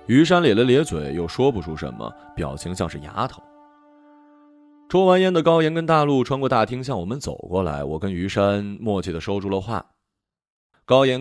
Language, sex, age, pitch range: Chinese, male, 30-49, 95-135 Hz